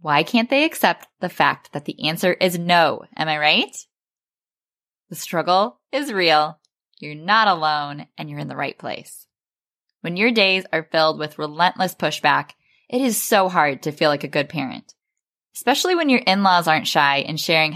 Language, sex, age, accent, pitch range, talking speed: English, female, 10-29, American, 155-215 Hz, 180 wpm